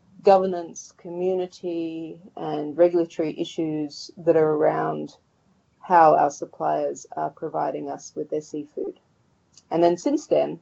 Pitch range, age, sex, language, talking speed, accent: 155-180 Hz, 30-49, female, English, 120 wpm, Australian